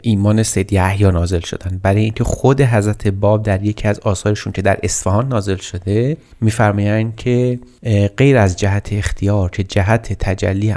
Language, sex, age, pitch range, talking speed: Persian, male, 30-49, 100-125 Hz, 155 wpm